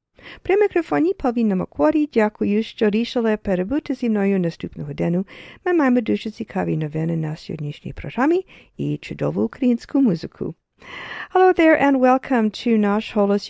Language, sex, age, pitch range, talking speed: English, female, 50-69, 180-245 Hz, 115 wpm